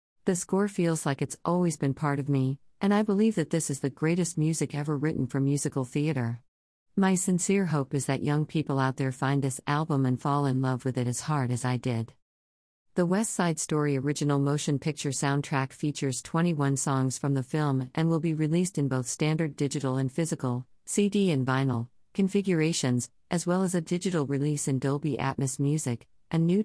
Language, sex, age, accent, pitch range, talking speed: English, female, 50-69, American, 130-160 Hz, 195 wpm